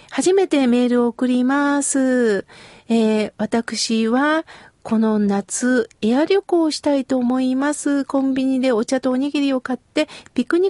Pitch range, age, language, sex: 230-290 Hz, 40-59, Japanese, female